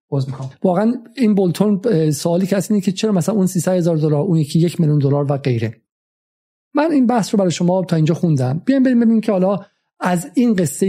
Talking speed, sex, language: 215 wpm, male, Persian